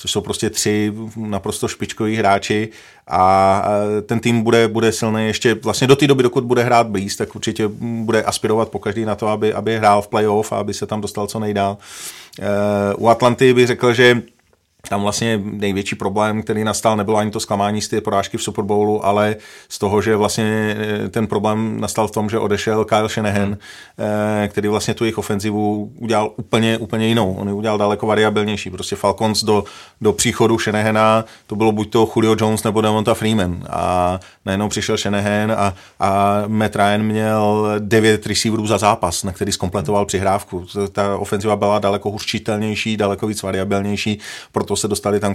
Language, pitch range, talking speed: Czech, 100-110 Hz, 180 wpm